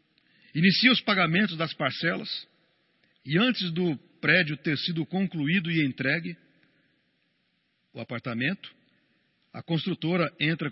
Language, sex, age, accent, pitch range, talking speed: Portuguese, male, 50-69, Brazilian, 135-195 Hz, 105 wpm